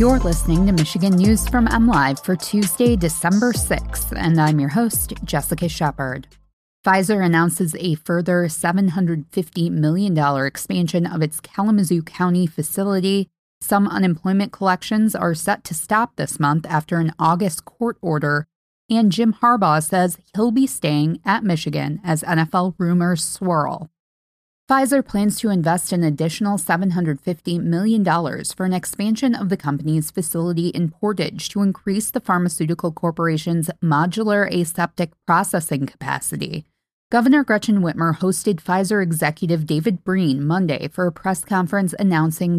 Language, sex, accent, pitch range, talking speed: English, female, American, 165-195 Hz, 135 wpm